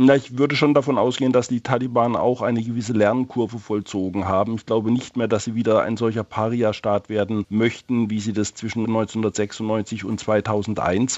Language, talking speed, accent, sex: German, 175 wpm, German, male